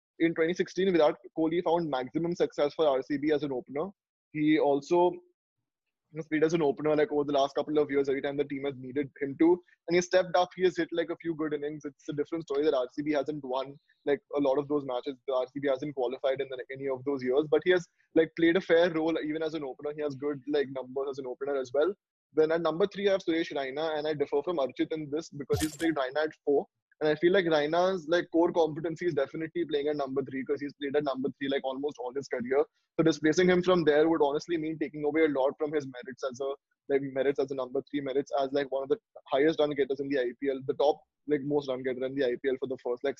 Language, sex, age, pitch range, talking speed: English, male, 20-39, 140-165 Hz, 255 wpm